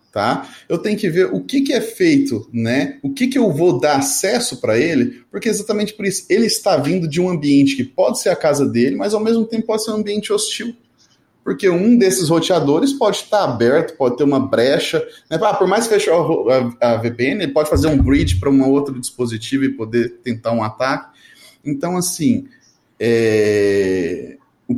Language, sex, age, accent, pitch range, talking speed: Portuguese, male, 20-39, Brazilian, 115-185 Hz, 205 wpm